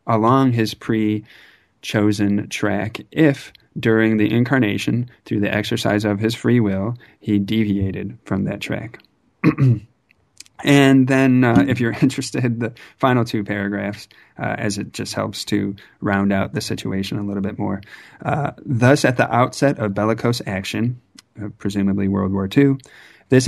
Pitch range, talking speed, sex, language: 105-125 Hz, 145 wpm, male, English